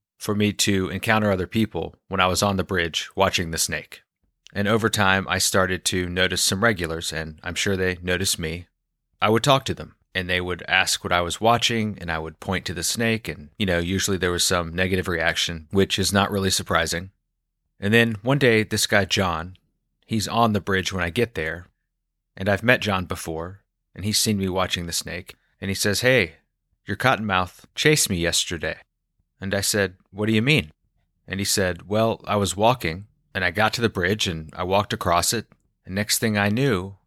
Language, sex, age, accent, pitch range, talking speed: English, male, 30-49, American, 90-105 Hz, 210 wpm